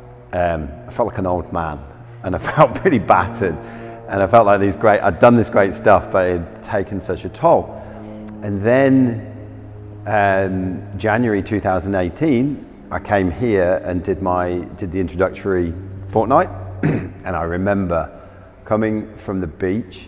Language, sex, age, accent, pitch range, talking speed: English, male, 40-59, British, 85-105 Hz, 155 wpm